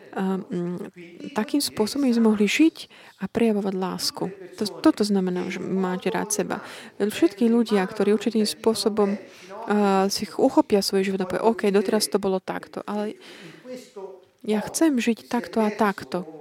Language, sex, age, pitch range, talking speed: Slovak, female, 30-49, 195-230 Hz, 140 wpm